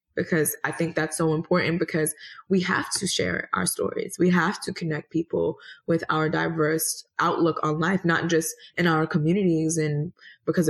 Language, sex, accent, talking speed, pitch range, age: English, female, American, 175 wpm, 155-205 Hz, 20-39